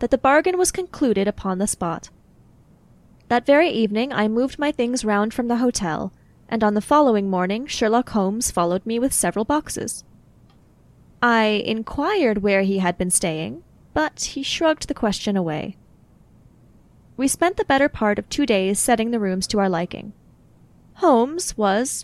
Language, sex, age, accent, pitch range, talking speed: English, female, 10-29, American, 200-275 Hz, 165 wpm